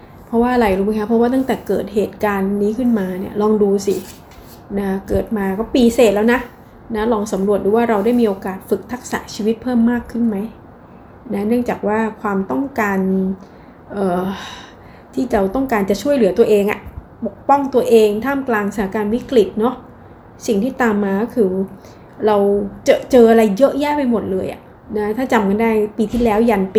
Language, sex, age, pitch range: Thai, female, 20-39, 200-240 Hz